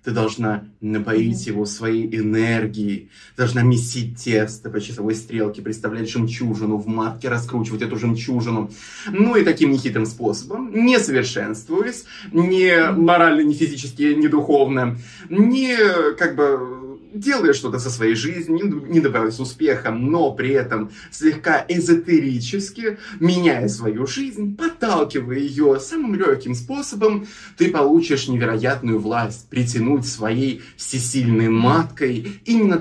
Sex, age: male, 20-39